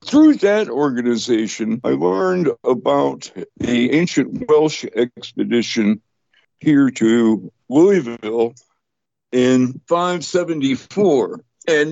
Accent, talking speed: American, 80 wpm